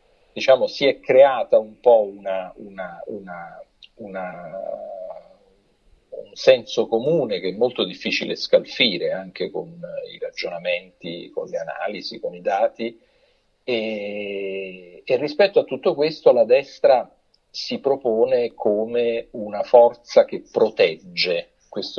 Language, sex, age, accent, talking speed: Italian, male, 50-69, native, 120 wpm